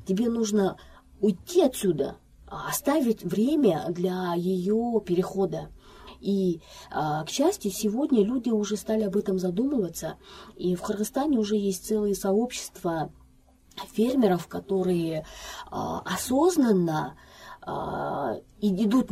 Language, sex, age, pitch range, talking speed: Russian, female, 20-39, 190-245 Hz, 95 wpm